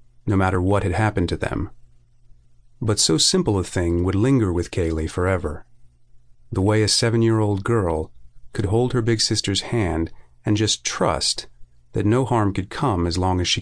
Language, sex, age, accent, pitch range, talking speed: English, male, 40-59, American, 90-120 Hz, 175 wpm